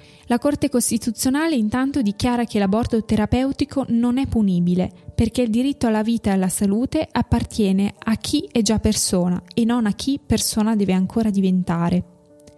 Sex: female